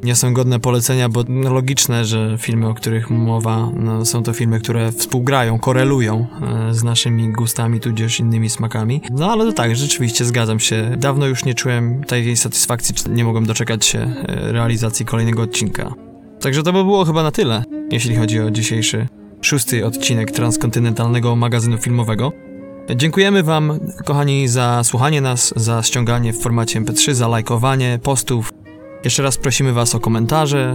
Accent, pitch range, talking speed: native, 115-130 Hz, 155 wpm